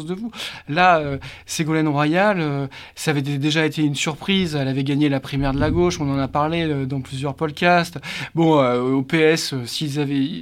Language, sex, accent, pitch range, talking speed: French, male, French, 145-175 Hz, 205 wpm